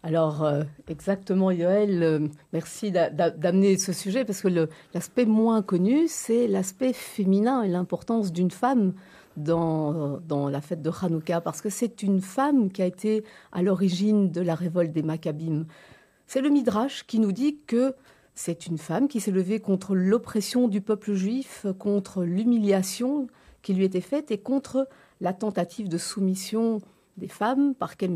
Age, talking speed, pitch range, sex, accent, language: 50-69, 170 wpm, 165-220 Hz, female, French, French